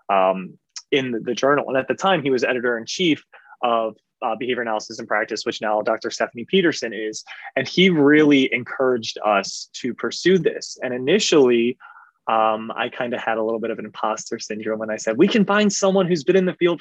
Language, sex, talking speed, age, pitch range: English, male, 215 wpm, 20-39, 115-145 Hz